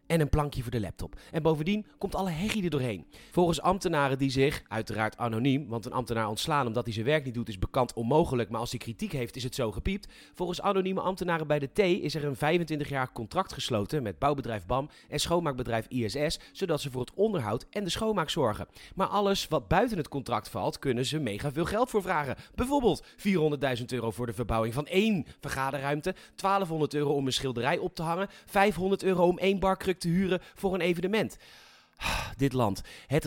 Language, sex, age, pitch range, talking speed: Dutch, male, 30-49, 130-190 Hz, 200 wpm